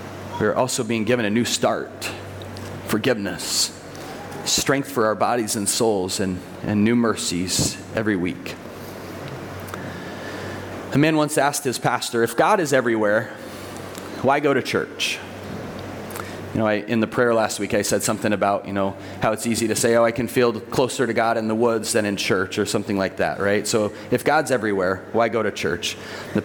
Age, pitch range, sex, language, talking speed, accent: 30-49, 100-125 Hz, male, English, 185 wpm, American